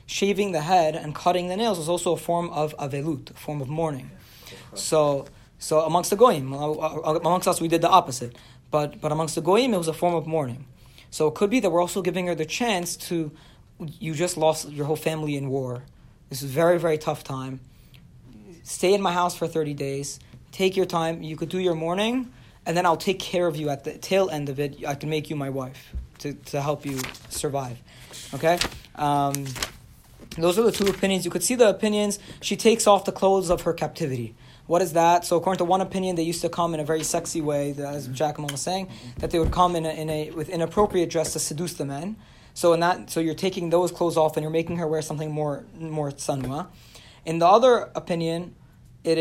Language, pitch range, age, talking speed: English, 145-175 Hz, 20-39, 225 wpm